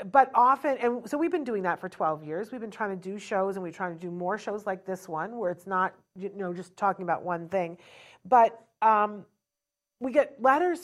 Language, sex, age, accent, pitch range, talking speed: English, female, 40-59, American, 180-220 Hz, 250 wpm